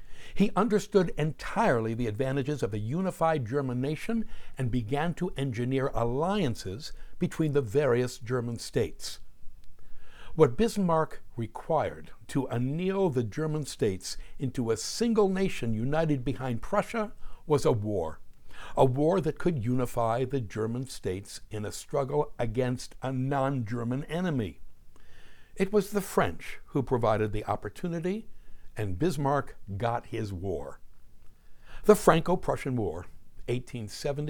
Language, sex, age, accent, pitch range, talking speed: English, male, 60-79, American, 115-155 Hz, 120 wpm